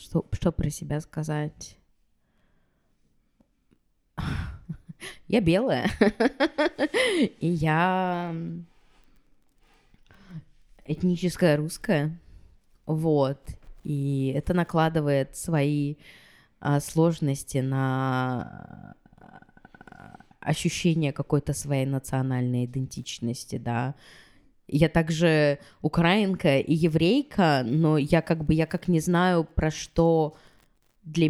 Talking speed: 75 wpm